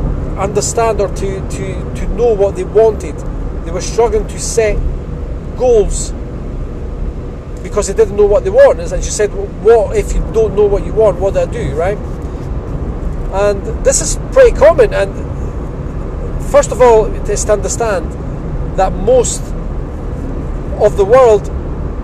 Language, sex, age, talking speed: English, male, 40-59, 155 wpm